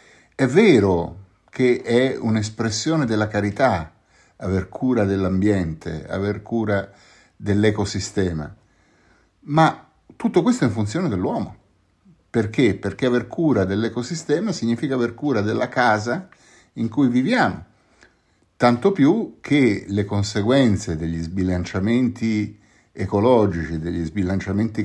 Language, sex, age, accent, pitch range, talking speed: Italian, male, 50-69, native, 95-120 Hz, 105 wpm